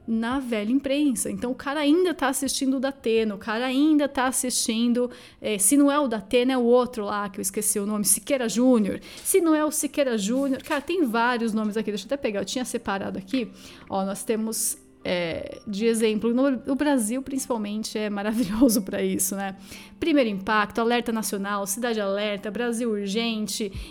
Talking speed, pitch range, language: 185 wpm, 215-265 Hz, Portuguese